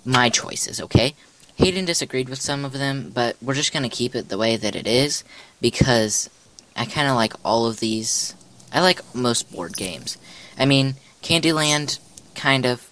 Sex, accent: female, American